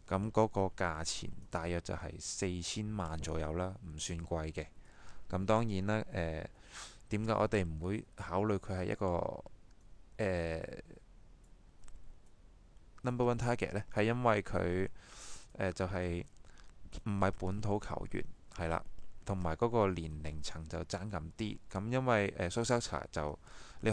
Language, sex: Chinese, male